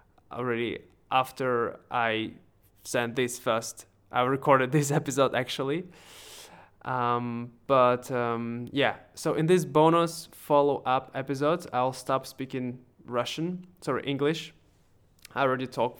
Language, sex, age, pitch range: Russian, male, 20-39, 125-150 Hz